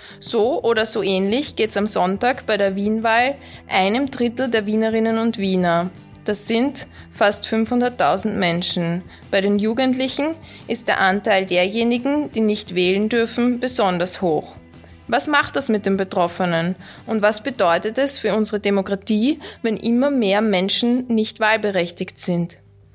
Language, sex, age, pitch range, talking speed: German, female, 20-39, 185-240 Hz, 145 wpm